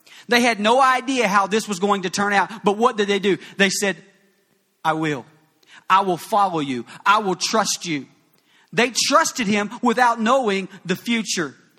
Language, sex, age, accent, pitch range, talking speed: English, male, 40-59, American, 185-220 Hz, 180 wpm